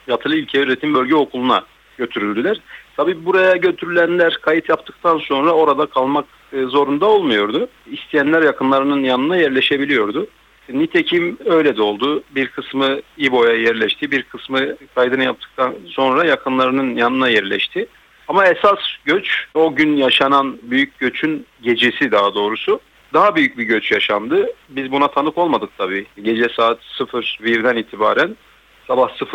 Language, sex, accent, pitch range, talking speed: Turkish, male, native, 115-175 Hz, 125 wpm